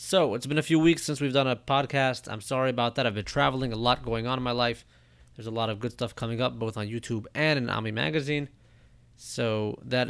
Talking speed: 250 wpm